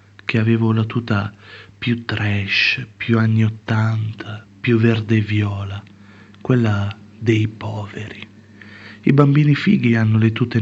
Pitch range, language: 105-115 Hz, Italian